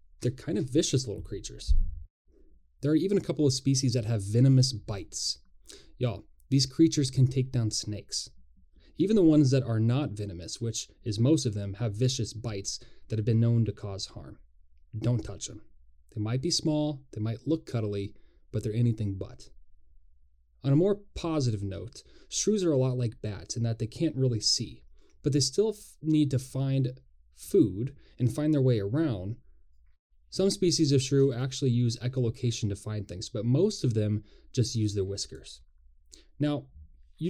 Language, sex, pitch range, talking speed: English, male, 100-135 Hz, 175 wpm